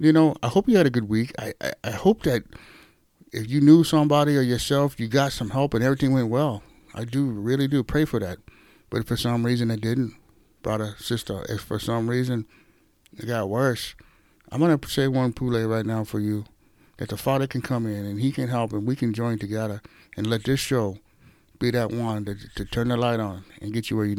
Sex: male